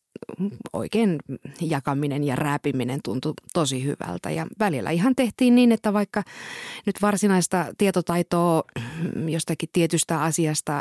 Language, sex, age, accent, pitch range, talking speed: Finnish, female, 30-49, native, 140-190 Hz, 110 wpm